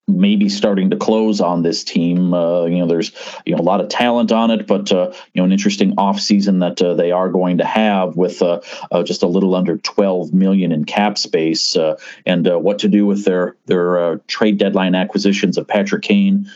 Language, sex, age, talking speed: English, male, 40-59, 225 wpm